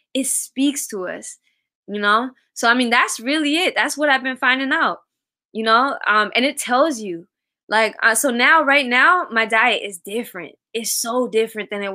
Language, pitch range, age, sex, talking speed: English, 200-255 Hz, 20-39, female, 200 wpm